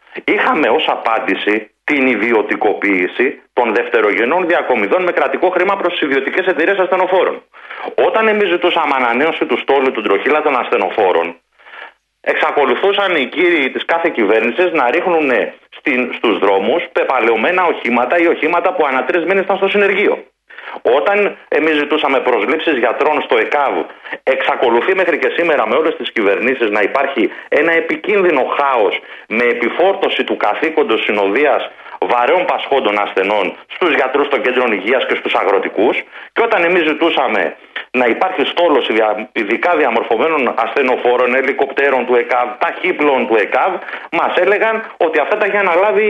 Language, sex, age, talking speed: Greek, male, 40-59, 135 wpm